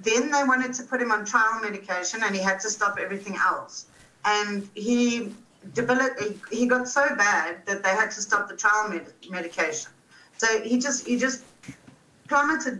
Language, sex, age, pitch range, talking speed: English, female, 40-59, 195-240 Hz, 180 wpm